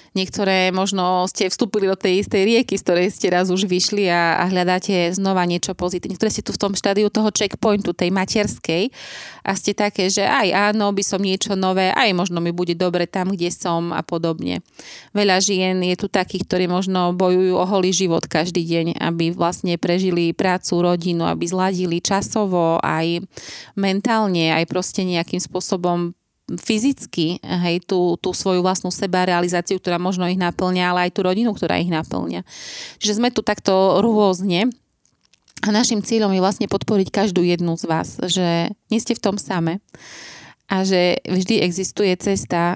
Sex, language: female, Slovak